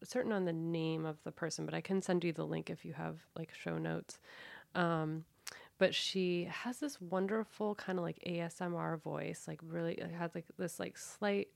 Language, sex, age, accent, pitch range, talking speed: English, female, 30-49, American, 160-180 Hz, 210 wpm